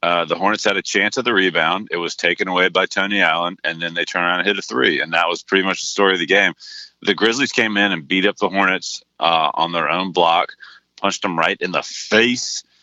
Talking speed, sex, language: 255 wpm, male, English